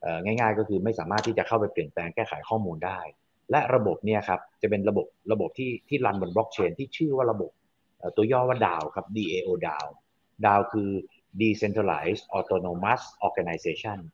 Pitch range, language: 95-120 Hz, Thai